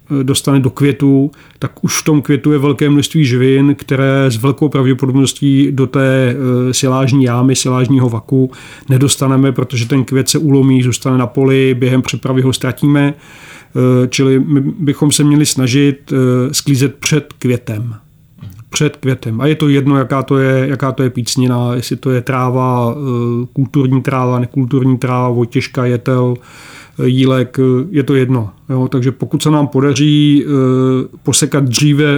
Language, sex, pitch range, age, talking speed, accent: Czech, male, 130-145 Hz, 40-59, 145 wpm, native